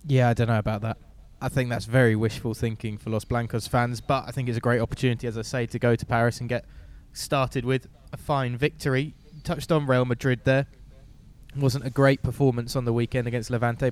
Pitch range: 115-135 Hz